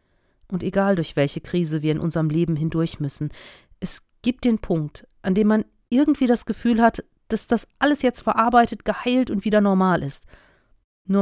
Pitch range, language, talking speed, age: 170-210 Hz, German, 175 wpm, 40-59